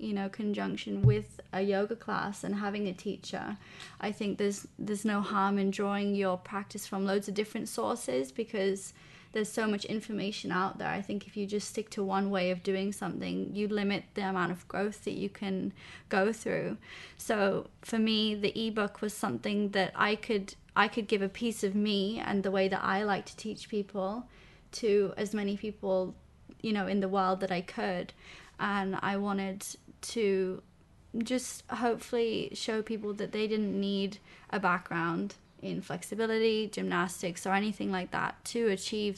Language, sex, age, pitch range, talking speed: English, female, 20-39, 190-215 Hz, 180 wpm